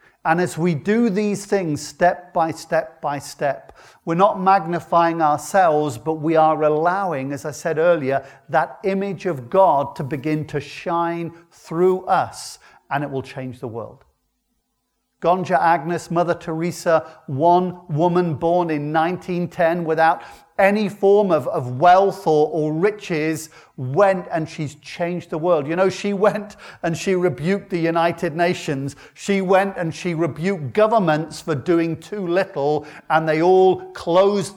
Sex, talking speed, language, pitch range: male, 150 wpm, English, 150-185 Hz